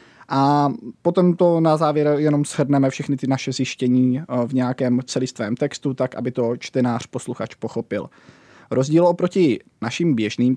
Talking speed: 140 wpm